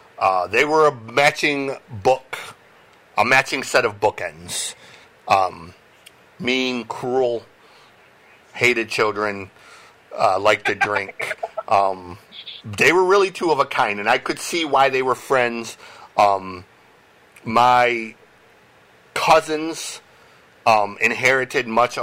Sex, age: male, 50-69